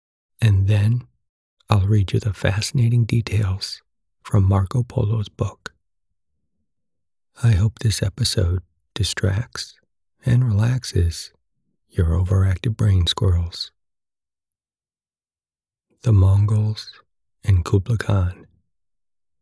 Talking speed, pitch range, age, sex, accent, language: 85 wpm, 95-115 Hz, 60-79, male, American, English